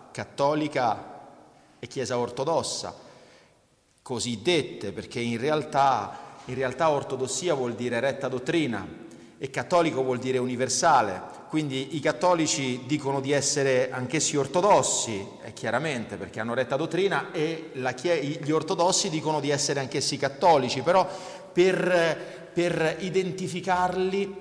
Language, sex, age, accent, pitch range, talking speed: Italian, male, 40-59, native, 130-170 Hz, 120 wpm